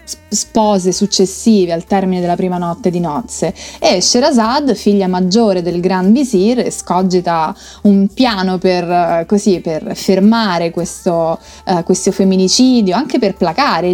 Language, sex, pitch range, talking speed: Italian, female, 180-215 Hz, 130 wpm